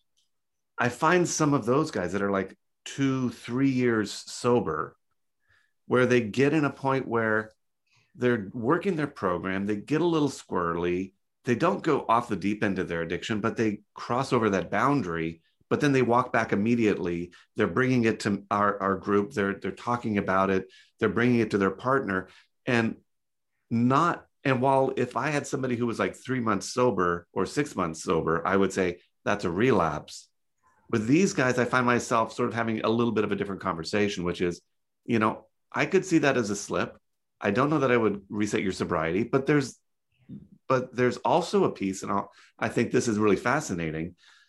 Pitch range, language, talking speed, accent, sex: 95-130 Hz, English, 195 wpm, American, male